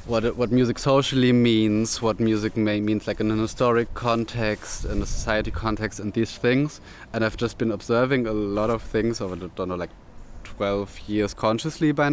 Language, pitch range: Danish, 100-115 Hz